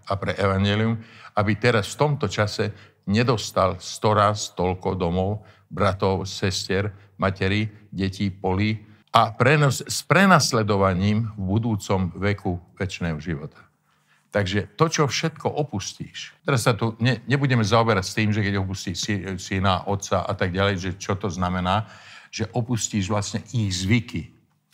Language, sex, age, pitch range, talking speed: Slovak, male, 50-69, 100-120 Hz, 135 wpm